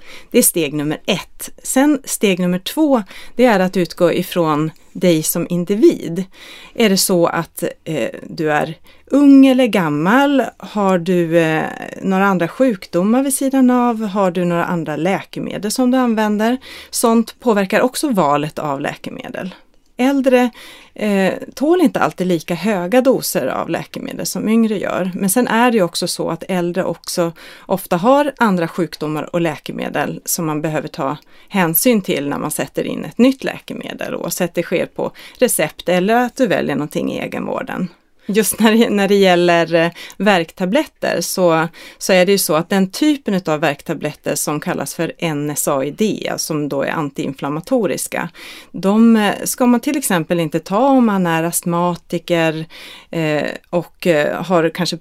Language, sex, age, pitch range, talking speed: Swedish, female, 30-49, 165-230 Hz, 155 wpm